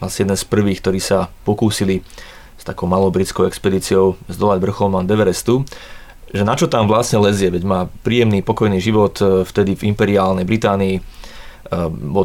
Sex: male